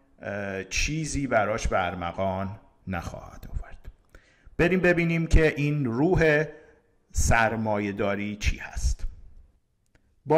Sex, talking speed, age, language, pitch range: male, 80 wpm, 50-69, Persian, 105-150 Hz